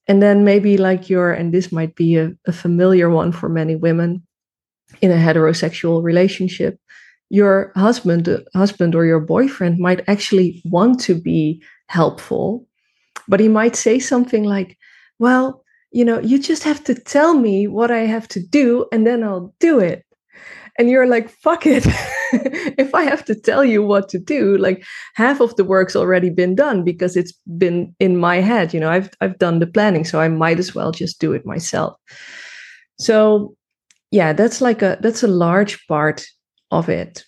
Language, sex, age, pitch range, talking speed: English, female, 20-39, 175-215 Hz, 180 wpm